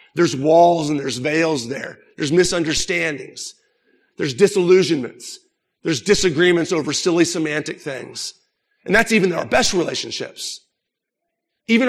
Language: English